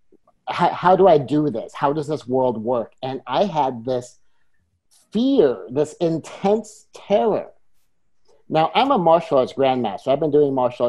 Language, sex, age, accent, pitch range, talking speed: English, male, 50-69, American, 130-160 Hz, 155 wpm